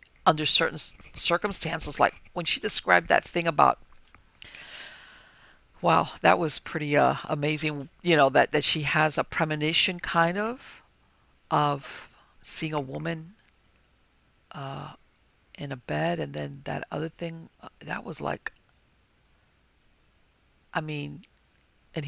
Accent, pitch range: American, 145-165 Hz